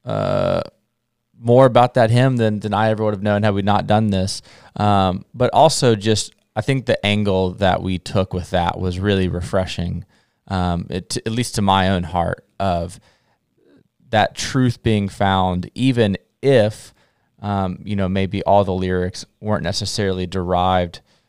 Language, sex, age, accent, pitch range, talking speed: English, male, 20-39, American, 90-110 Hz, 165 wpm